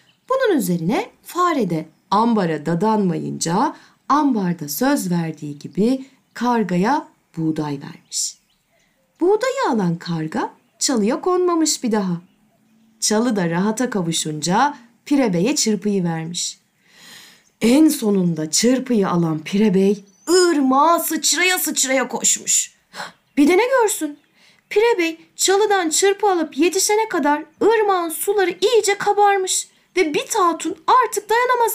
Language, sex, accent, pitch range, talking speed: Turkish, female, native, 215-350 Hz, 110 wpm